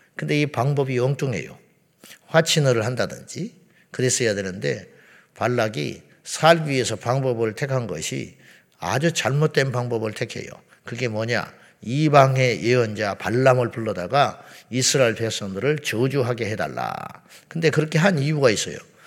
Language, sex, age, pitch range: Korean, male, 50-69, 120-155 Hz